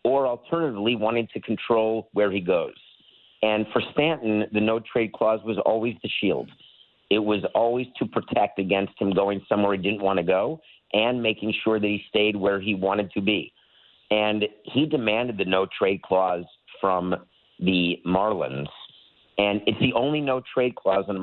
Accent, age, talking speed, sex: American, 50-69, 170 wpm, male